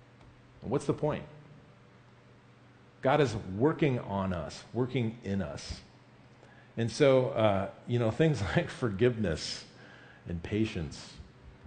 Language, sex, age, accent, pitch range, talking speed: English, male, 40-59, American, 110-140 Hz, 110 wpm